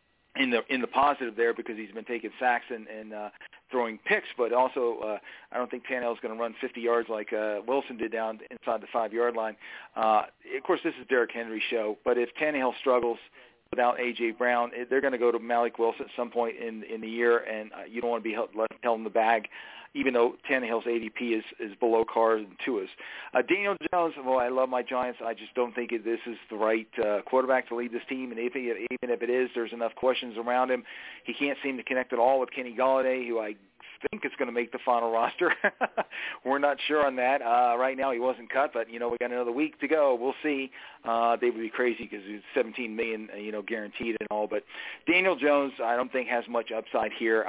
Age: 40-59